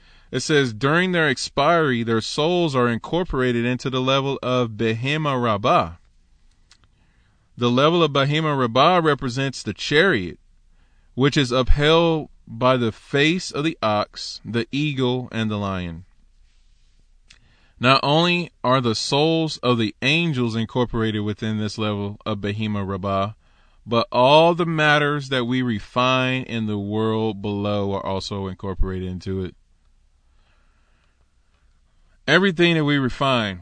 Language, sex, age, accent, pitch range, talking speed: English, male, 20-39, American, 95-135 Hz, 130 wpm